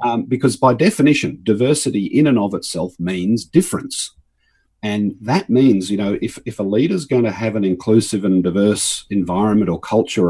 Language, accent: English, Australian